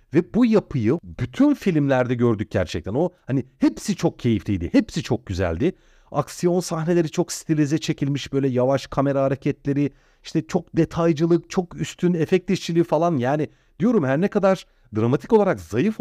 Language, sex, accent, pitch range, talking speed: Turkish, male, native, 125-185 Hz, 145 wpm